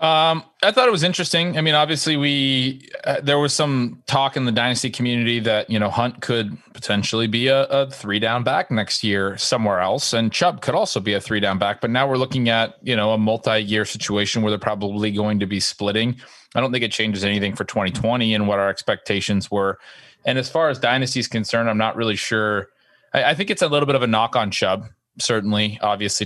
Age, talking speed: 20-39, 230 wpm